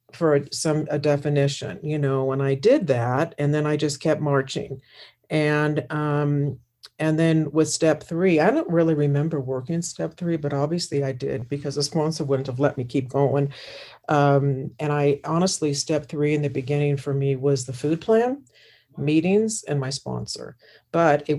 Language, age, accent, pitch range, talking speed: English, 50-69, American, 135-155 Hz, 180 wpm